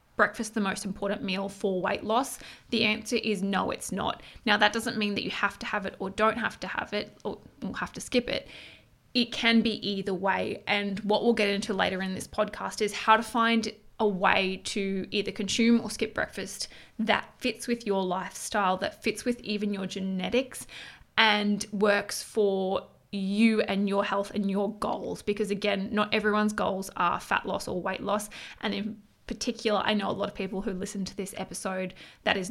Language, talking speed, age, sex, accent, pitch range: English, 200 wpm, 20-39, female, Australian, 195-225 Hz